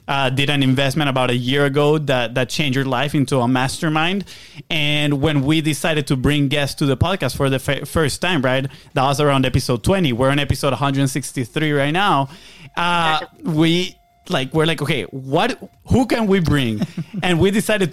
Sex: male